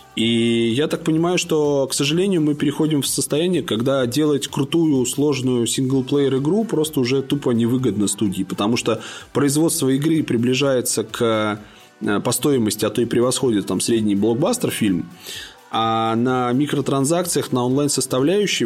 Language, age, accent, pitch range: Russian, 20-39, native, 115-150 Hz